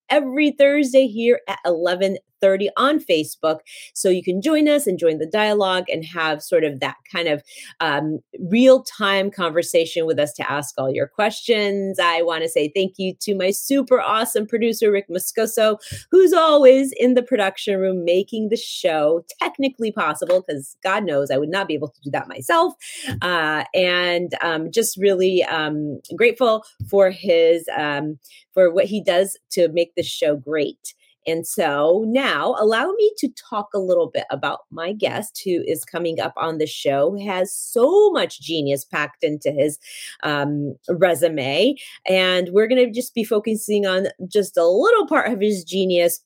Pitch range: 170-260 Hz